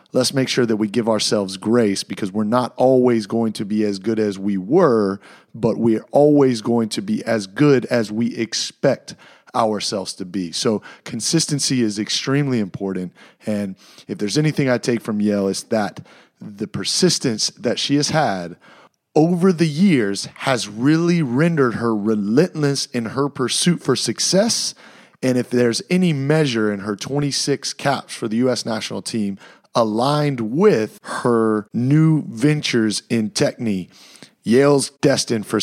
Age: 30-49